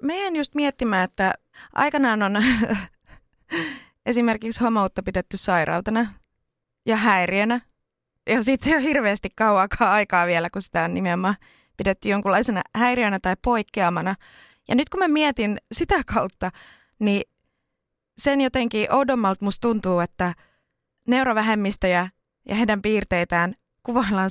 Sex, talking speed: female, 115 wpm